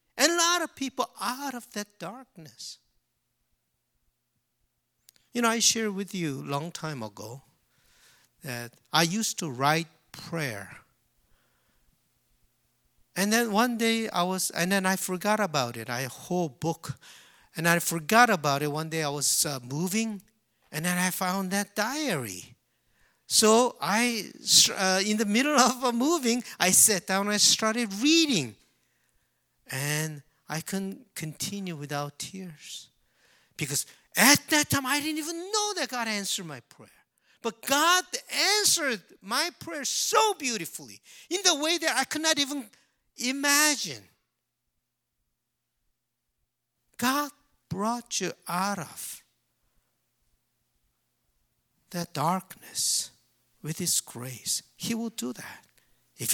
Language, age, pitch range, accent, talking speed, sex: English, 50-69, 150-245 Hz, Japanese, 135 wpm, male